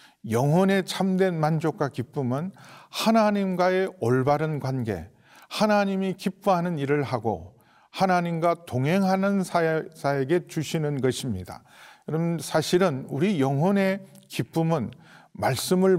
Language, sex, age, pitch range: Korean, male, 40-59, 130-175 Hz